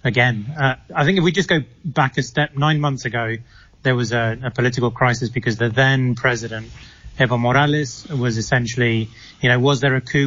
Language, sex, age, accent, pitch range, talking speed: English, male, 30-49, British, 120-140 Hz, 185 wpm